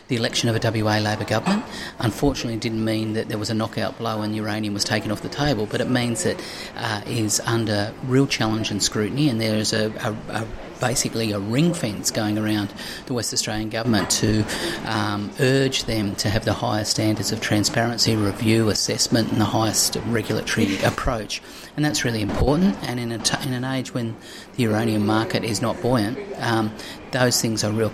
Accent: Australian